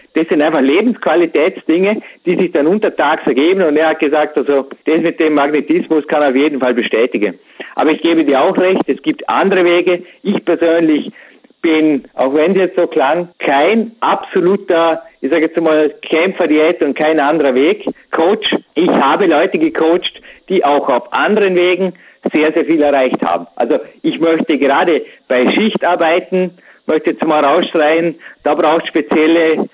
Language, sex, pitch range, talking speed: German, male, 150-180 Hz, 170 wpm